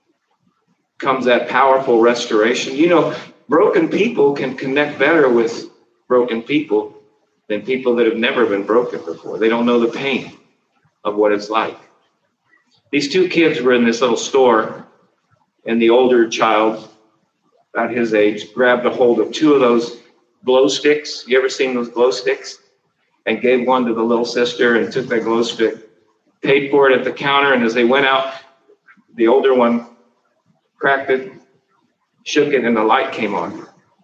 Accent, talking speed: American, 170 wpm